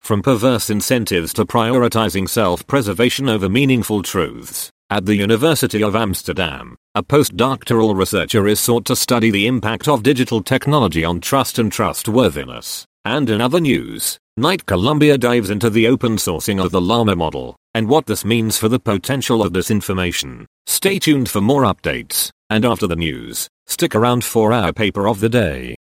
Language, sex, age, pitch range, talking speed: English, male, 40-59, 100-130 Hz, 165 wpm